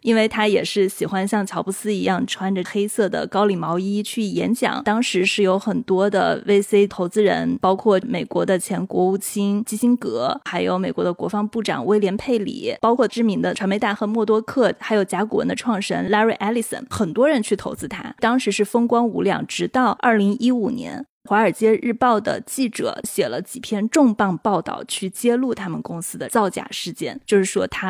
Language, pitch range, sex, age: Chinese, 200-240 Hz, female, 20-39